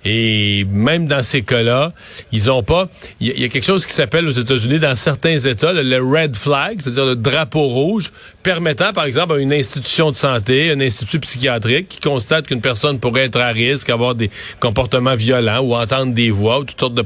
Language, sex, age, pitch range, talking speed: French, male, 40-59, 120-145 Hz, 210 wpm